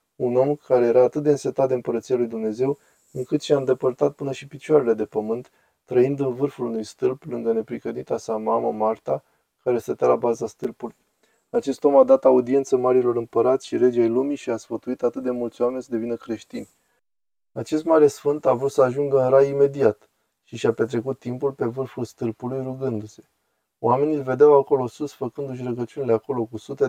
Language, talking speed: Romanian, 185 wpm